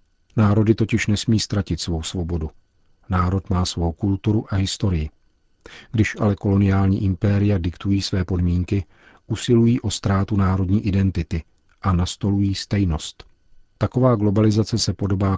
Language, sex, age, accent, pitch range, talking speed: Czech, male, 40-59, native, 90-105 Hz, 120 wpm